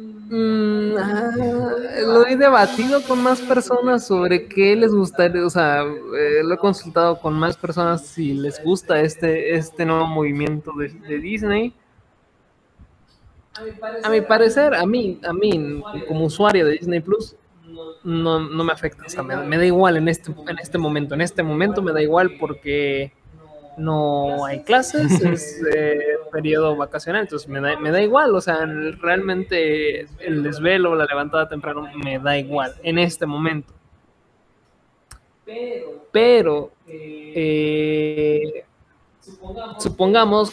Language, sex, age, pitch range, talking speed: Spanish, male, 20-39, 150-190 Hz, 140 wpm